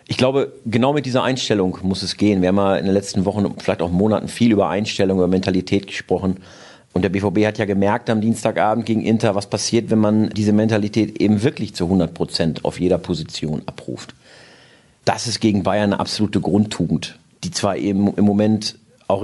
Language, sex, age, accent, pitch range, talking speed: German, male, 40-59, German, 95-120 Hz, 200 wpm